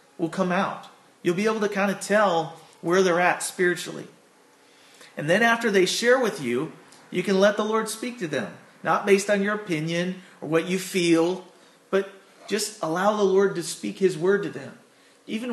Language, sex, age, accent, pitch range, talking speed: English, male, 40-59, American, 150-195 Hz, 195 wpm